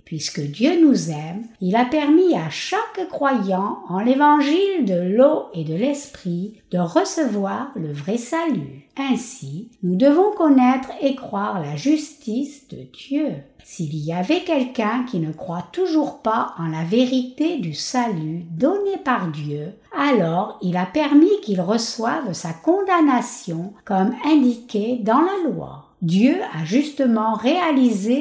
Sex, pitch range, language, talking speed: female, 180-295 Hz, French, 140 wpm